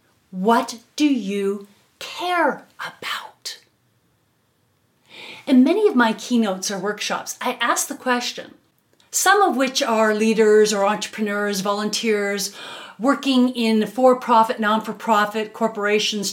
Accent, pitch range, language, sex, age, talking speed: American, 205-285 Hz, English, female, 40-59, 105 wpm